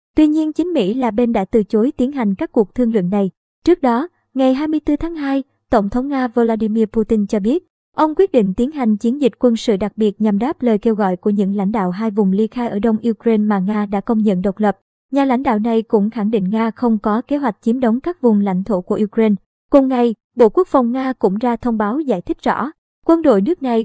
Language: Vietnamese